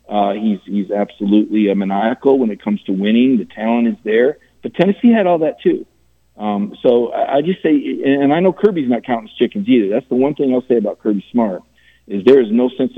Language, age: English, 40-59